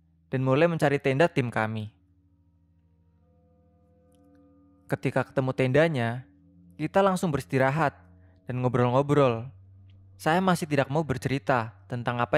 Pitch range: 105-150 Hz